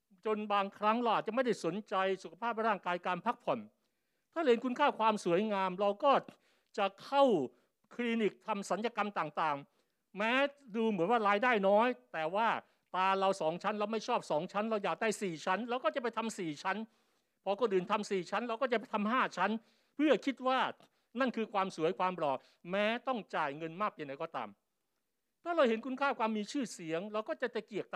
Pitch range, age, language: 180-235 Hz, 60-79, Thai